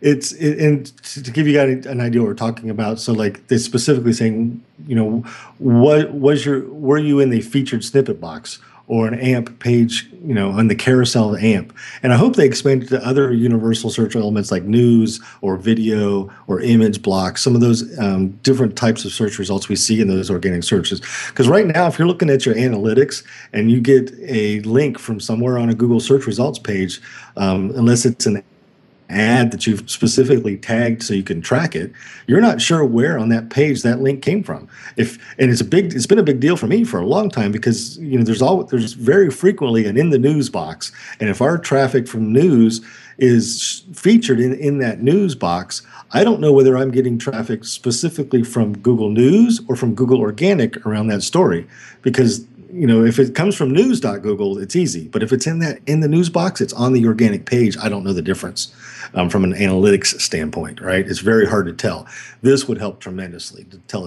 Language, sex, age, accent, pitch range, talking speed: English, male, 40-59, American, 110-140 Hz, 210 wpm